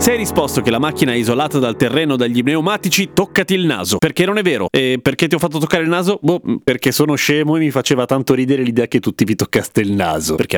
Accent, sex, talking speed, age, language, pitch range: native, male, 250 wpm, 30-49, Italian, 130-190 Hz